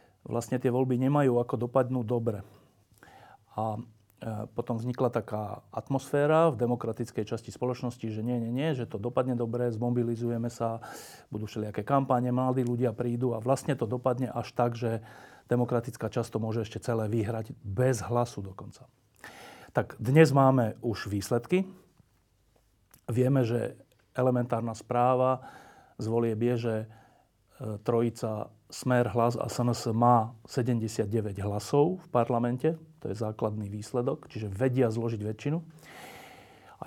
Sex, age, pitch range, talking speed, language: male, 40-59, 110-130 Hz, 125 wpm, Slovak